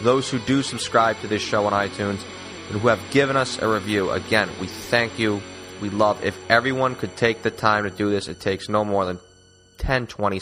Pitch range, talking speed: 100-125 Hz, 220 wpm